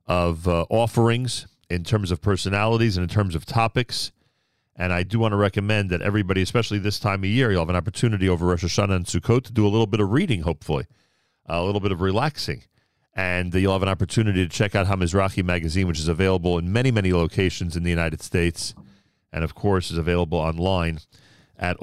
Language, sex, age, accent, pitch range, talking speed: English, male, 40-59, American, 95-120 Hz, 210 wpm